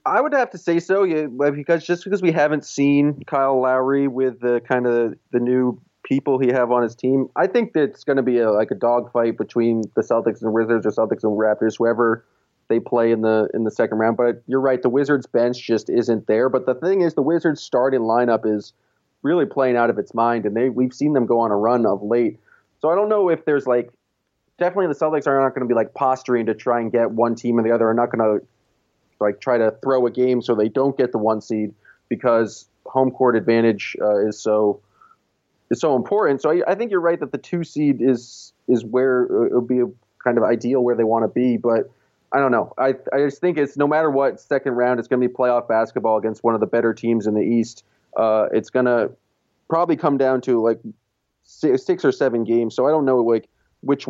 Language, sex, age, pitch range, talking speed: English, male, 30-49, 115-140 Hz, 240 wpm